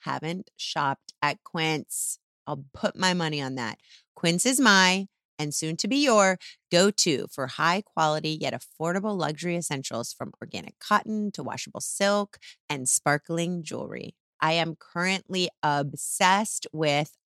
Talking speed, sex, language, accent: 140 wpm, female, English, American